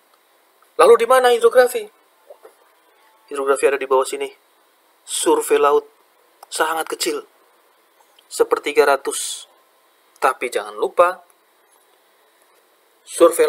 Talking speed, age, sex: 85 wpm, 30-49, male